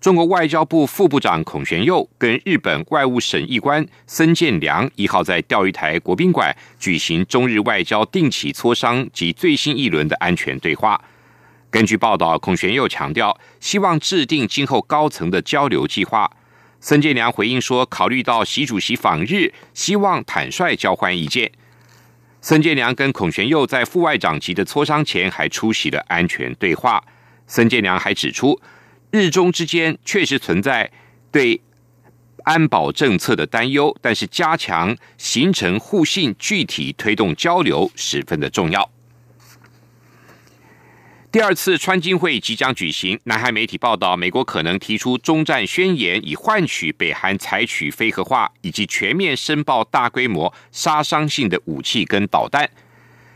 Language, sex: German, male